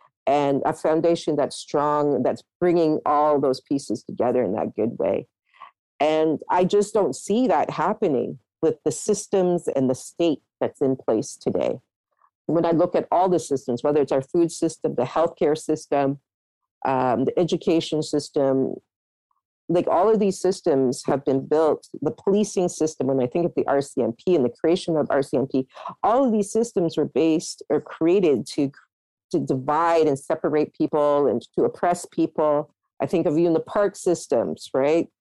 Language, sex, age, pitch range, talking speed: English, female, 50-69, 145-175 Hz, 170 wpm